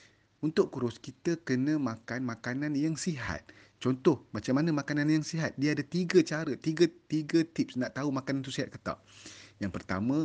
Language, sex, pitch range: Malay, male, 105-160 Hz